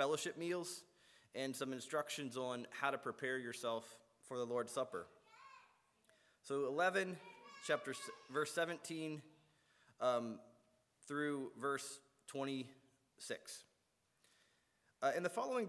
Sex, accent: male, American